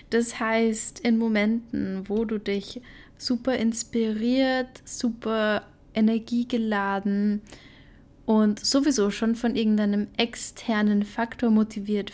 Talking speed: 95 wpm